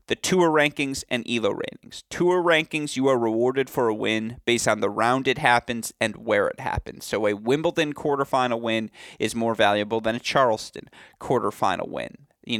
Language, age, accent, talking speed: English, 30-49, American, 180 wpm